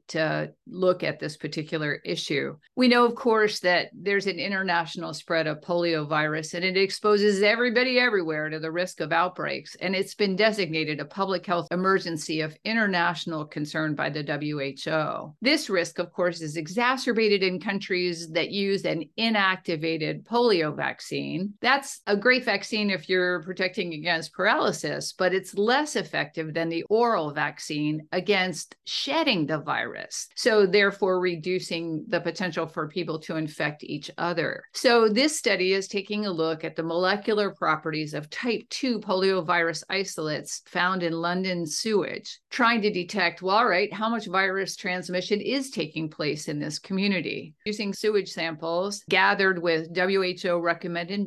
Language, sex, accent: English, female, American